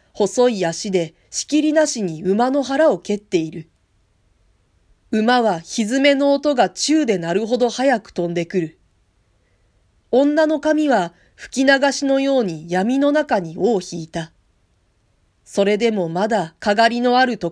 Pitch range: 155-260 Hz